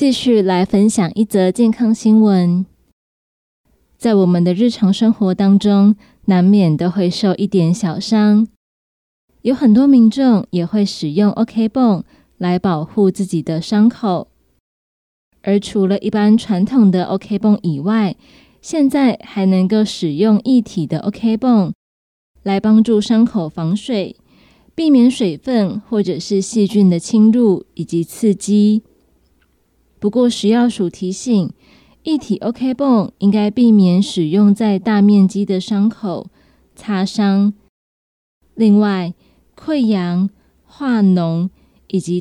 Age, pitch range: 20-39, 185-225 Hz